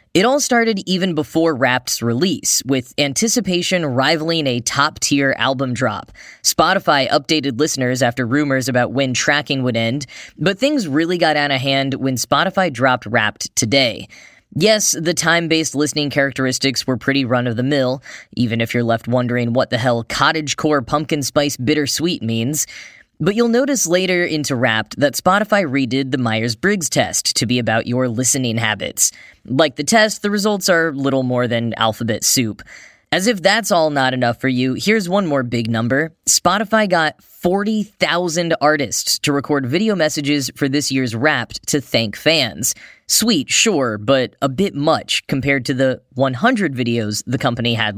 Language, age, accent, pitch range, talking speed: English, 10-29, American, 125-165 Hz, 170 wpm